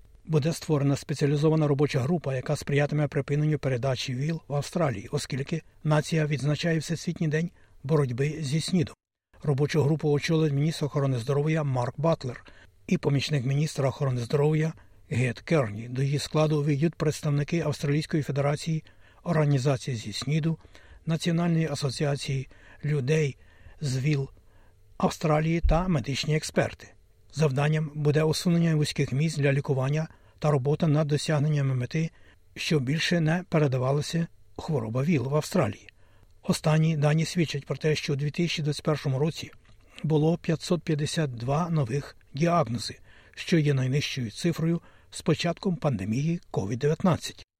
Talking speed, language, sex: 120 wpm, Ukrainian, male